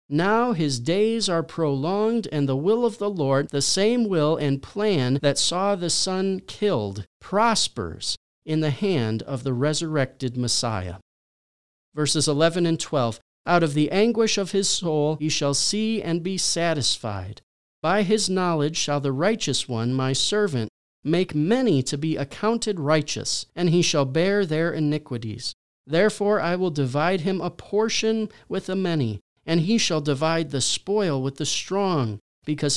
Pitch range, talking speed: 130-195 Hz, 160 wpm